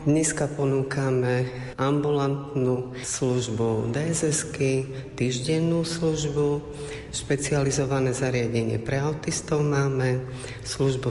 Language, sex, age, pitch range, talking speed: Slovak, female, 40-59, 120-145 Hz, 70 wpm